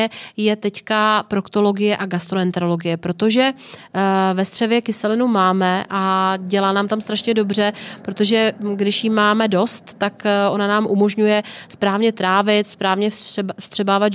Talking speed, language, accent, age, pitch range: 125 wpm, Czech, native, 30-49, 195-215 Hz